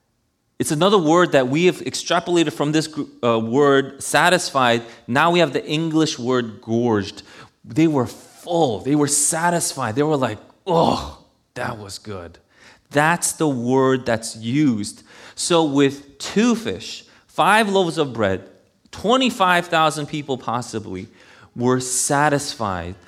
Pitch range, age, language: 115-170 Hz, 30-49, English